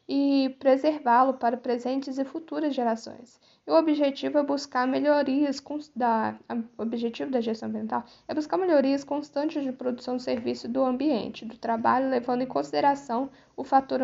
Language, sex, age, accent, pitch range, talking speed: Portuguese, female, 10-29, Brazilian, 235-280 Hz, 165 wpm